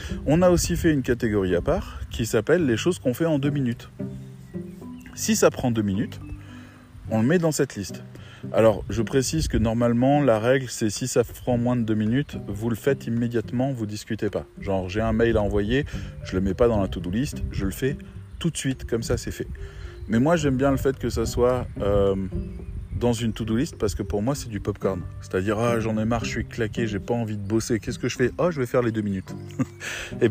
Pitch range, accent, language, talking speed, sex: 100-130 Hz, French, French, 240 wpm, male